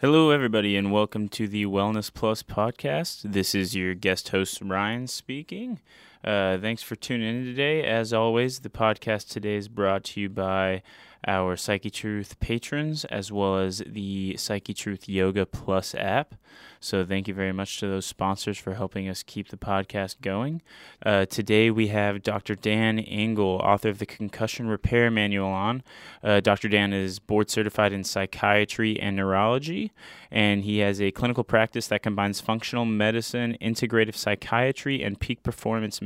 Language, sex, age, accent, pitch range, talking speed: English, male, 10-29, American, 100-110 Hz, 165 wpm